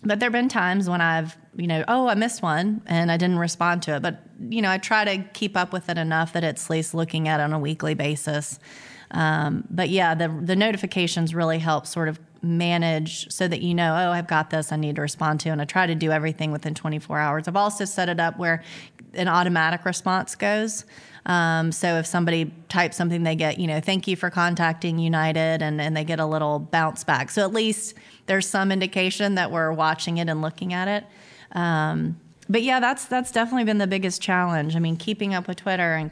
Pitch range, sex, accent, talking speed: 155-185 Hz, female, American, 230 wpm